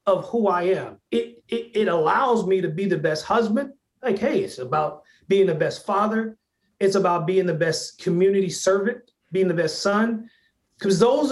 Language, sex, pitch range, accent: English, male, 165-205 Hz, American